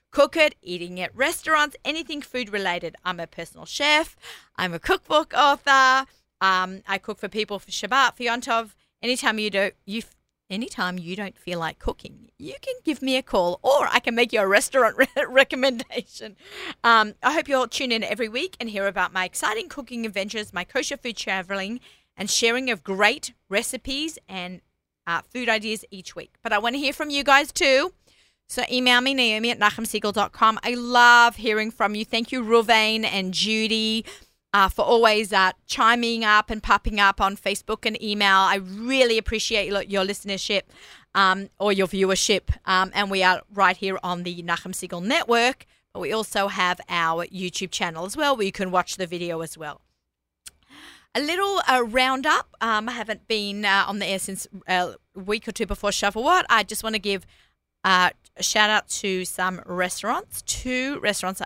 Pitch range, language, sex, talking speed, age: 190-245 Hz, English, female, 180 wpm, 40-59